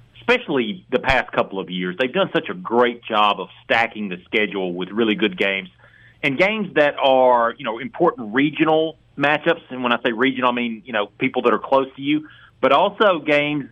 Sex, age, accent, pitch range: male, 40-59, American, 115-155 Hz